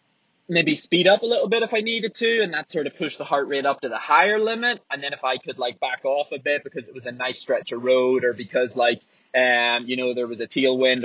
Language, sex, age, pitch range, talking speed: English, male, 20-39, 140-180 Hz, 280 wpm